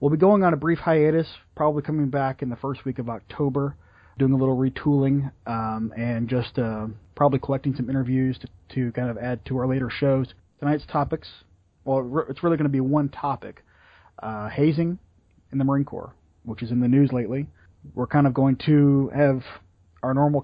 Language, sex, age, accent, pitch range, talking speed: English, male, 30-49, American, 115-140 Hz, 195 wpm